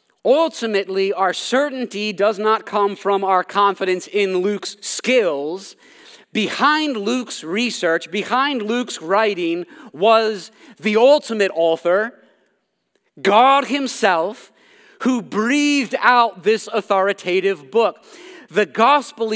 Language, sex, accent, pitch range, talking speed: English, male, American, 205-275 Hz, 100 wpm